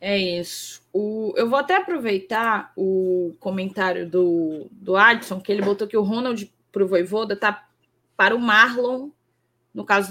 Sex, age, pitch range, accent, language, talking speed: female, 10-29, 200-250 Hz, Brazilian, Portuguese, 155 wpm